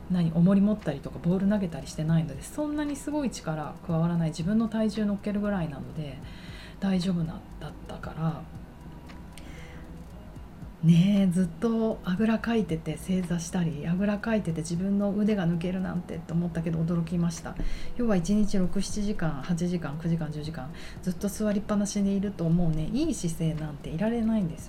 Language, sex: Japanese, female